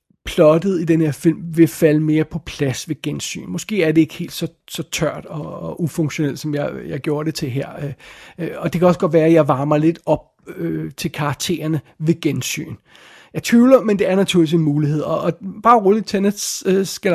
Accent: native